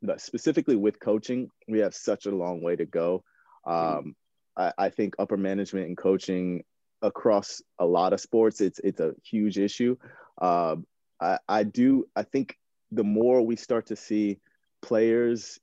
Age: 30-49